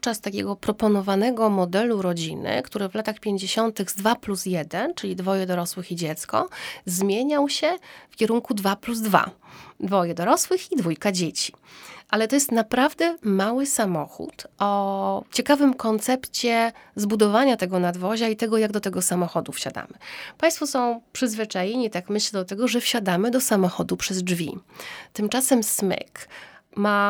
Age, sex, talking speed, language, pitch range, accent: 30-49, female, 145 wpm, Polish, 190-235 Hz, native